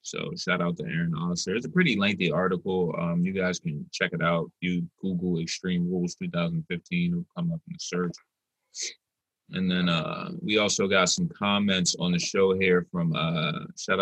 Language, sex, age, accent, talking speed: English, male, 20-39, American, 190 wpm